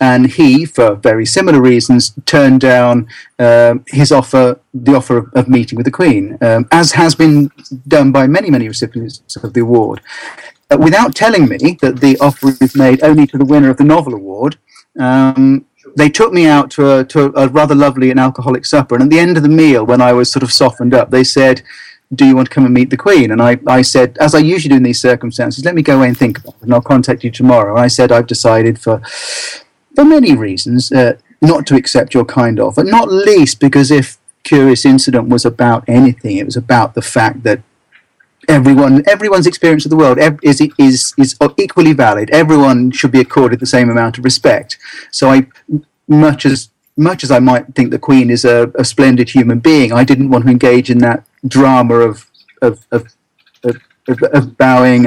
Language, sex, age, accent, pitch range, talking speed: English, male, 40-59, British, 125-145 Hz, 210 wpm